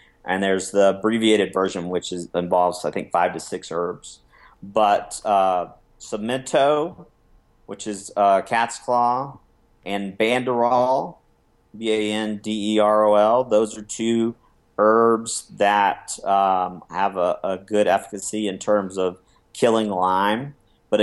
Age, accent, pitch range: 40-59, American, 95-115 Hz